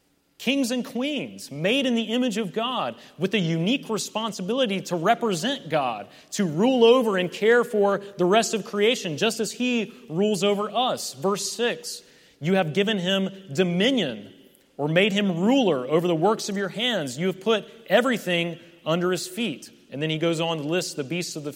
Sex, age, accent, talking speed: male, 30-49, American, 185 wpm